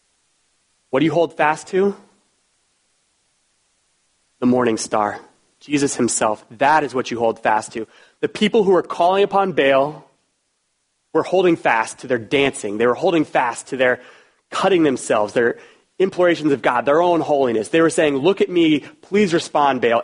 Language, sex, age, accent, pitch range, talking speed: English, male, 30-49, American, 120-155 Hz, 165 wpm